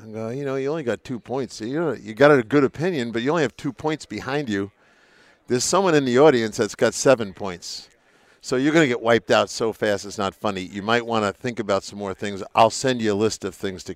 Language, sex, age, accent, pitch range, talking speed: English, male, 50-69, American, 105-130 Hz, 250 wpm